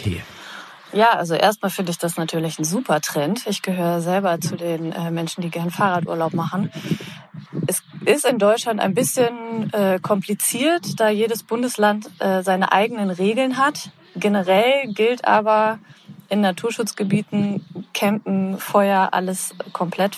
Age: 20-39